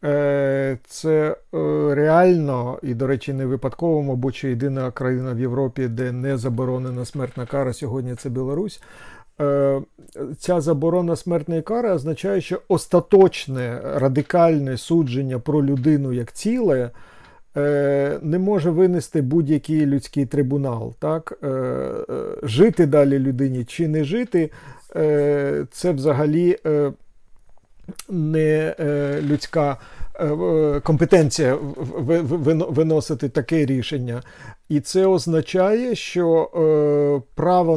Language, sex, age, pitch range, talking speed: Ukrainian, male, 50-69, 135-165 Hz, 95 wpm